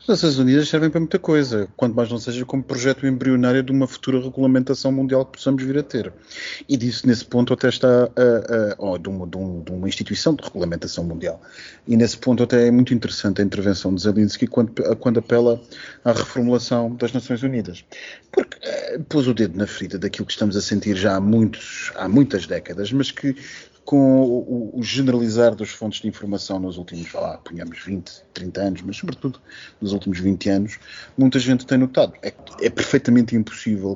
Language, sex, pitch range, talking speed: Portuguese, male, 100-130 Hz, 195 wpm